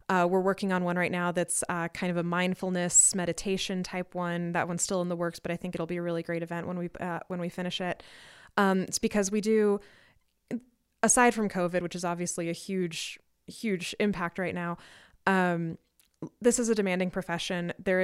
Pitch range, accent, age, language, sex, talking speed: 170-190 Hz, American, 20-39, English, female, 205 wpm